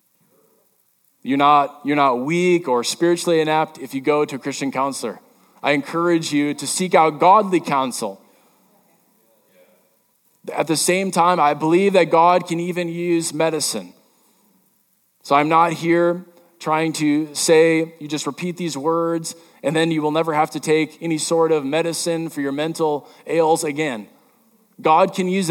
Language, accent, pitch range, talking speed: English, American, 155-185 Hz, 160 wpm